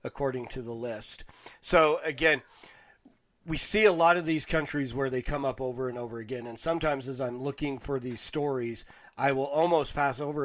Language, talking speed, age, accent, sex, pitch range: English, 195 wpm, 40-59, American, male, 130-150 Hz